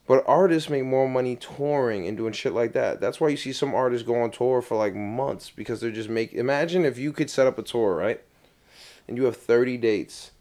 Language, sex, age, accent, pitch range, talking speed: English, male, 20-39, American, 110-145 Hz, 235 wpm